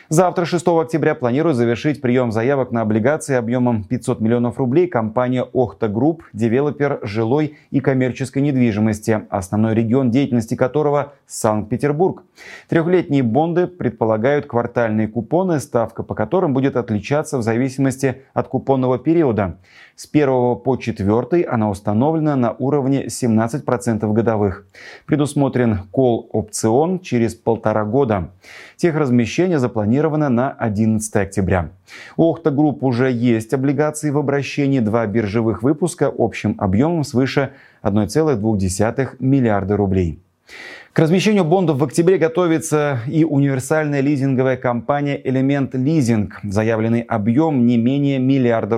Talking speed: 120 wpm